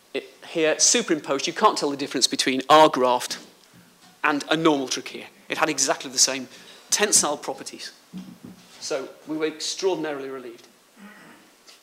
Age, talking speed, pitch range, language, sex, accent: 40-59, 135 wpm, 135-185 Hz, English, male, British